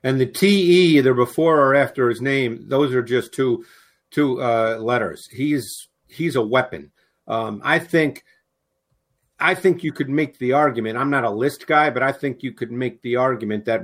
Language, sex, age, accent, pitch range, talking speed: English, male, 50-69, American, 120-155 Hz, 190 wpm